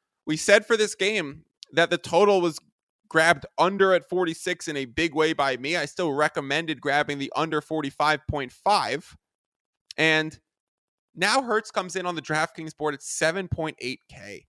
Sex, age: male, 20-39